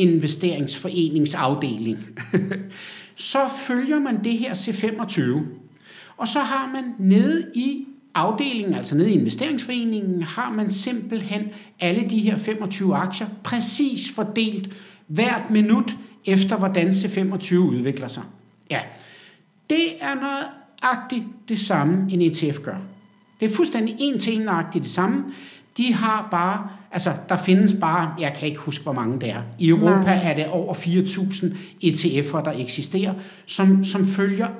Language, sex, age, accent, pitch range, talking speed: Danish, male, 60-79, native, 150-215 Hz, 140 wpm